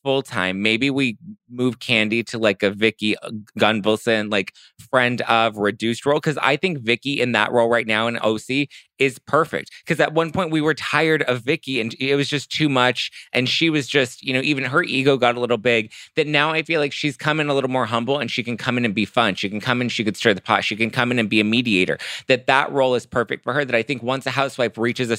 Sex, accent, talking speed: male, American, 255 wpm